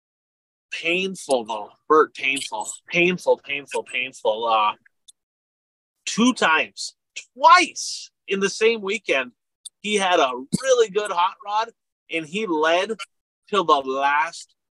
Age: 30-49